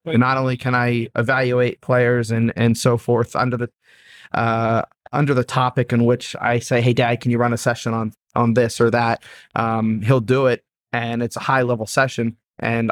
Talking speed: 200 wpm